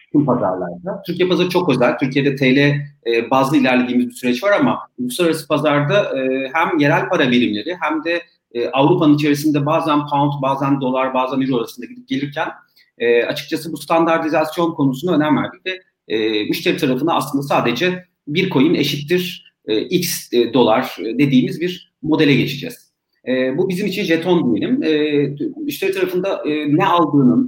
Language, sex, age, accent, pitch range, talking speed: Turkish, male, 40-59, native, 140-180 Hz, 140 wpm